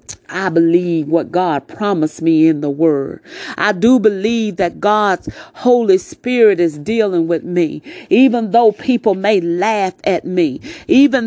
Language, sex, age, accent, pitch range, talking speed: English, female, 40-59, American, 170-220 Hz, 150 wpm